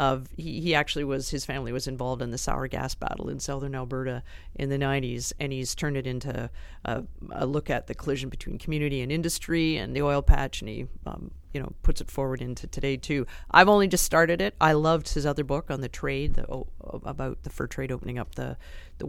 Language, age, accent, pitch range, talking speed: English, 40-59, American, 125-150 Hz, 230 wpm